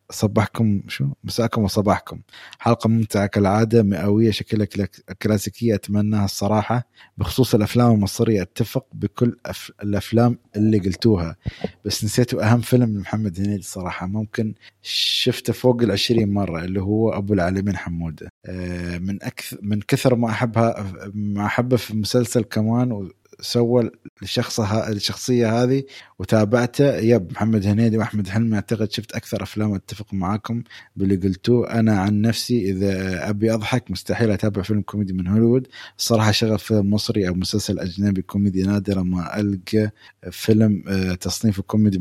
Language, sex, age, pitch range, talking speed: Arabic, male, 20-39, 95-115 Hz, 135 wpm